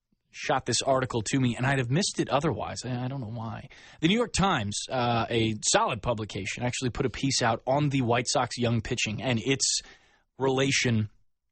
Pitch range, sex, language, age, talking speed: 115-135 Hz, male, English, 20-39, 195 wpm